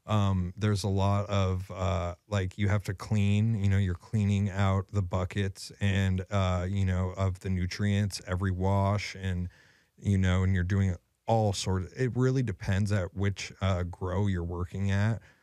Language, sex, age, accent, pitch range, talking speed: English, male, 30-49, American, 90-100 Hz, 180 wpm